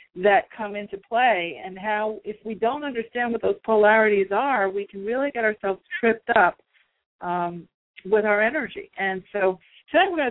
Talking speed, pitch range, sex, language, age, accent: 175 wpm, 185-220 Hz, female, English, 50-69, American